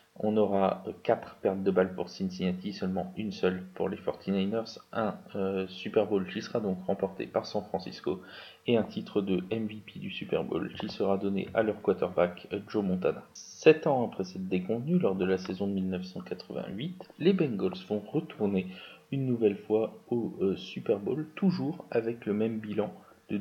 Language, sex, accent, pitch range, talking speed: French, male, French, 95-115 Hz, 175 wpm